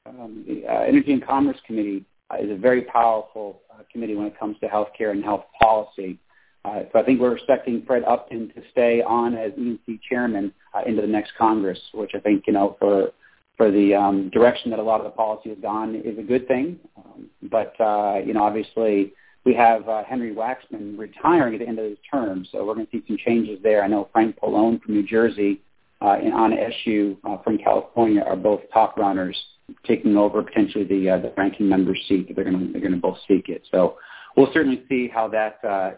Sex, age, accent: male, 40-59, American